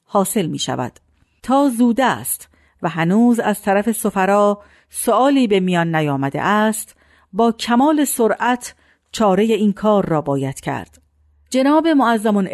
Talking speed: 125 wpm